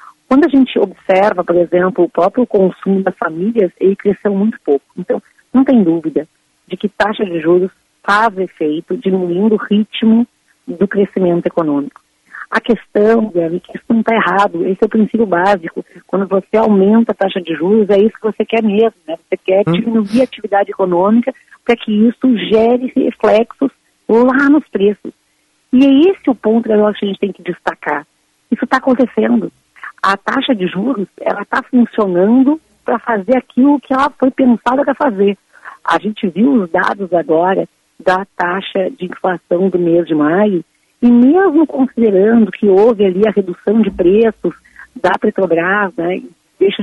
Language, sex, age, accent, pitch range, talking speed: Portuguese, female, 40-59, Brazilian, 185-240 Hz, 165 wpm